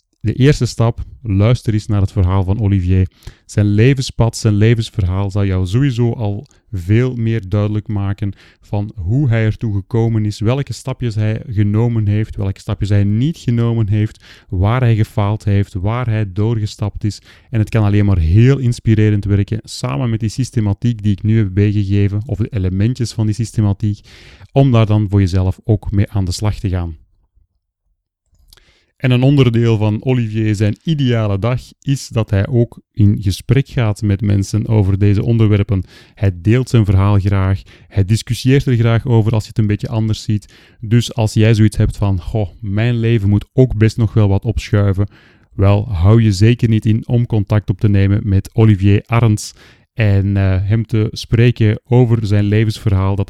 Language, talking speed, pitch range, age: Dutch, 180 wpm, 100-115 Hz, 30-49